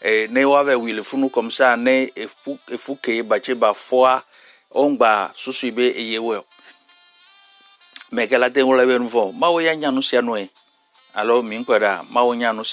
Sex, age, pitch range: male, 60-79, 120-175 Hz